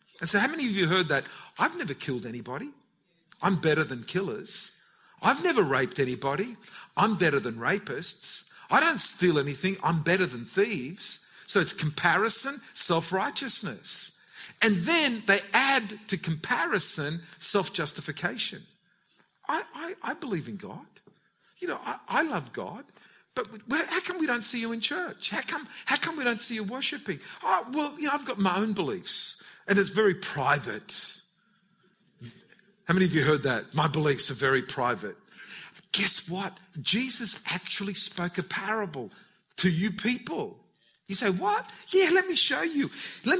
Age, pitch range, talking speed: 50-69, 180-240 Hz, 160 wpm